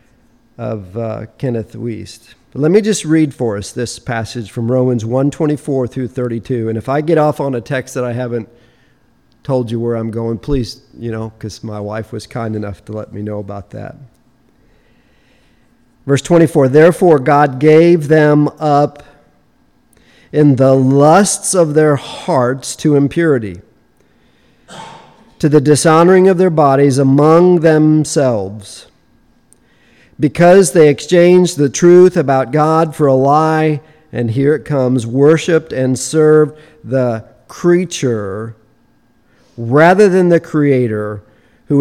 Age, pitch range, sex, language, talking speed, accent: 50-69, 120-155 Hz, male, English, 140 wpm, American